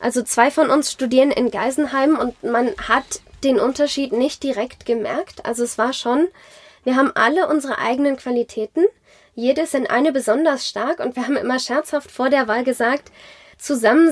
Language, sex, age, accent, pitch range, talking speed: German, female, 10-29, German, 245-295 Hz, 170 wpm